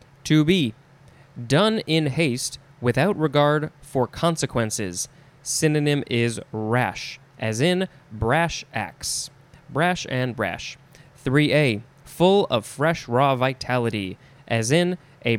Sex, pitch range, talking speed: male, 130-155 Hz, 105 wpm